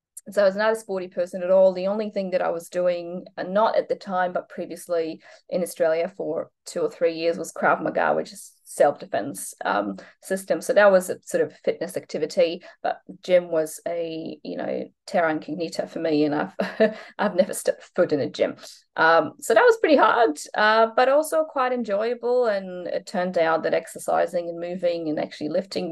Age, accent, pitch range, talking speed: 20-39, Australian, 165-210 Hz, 205 wpm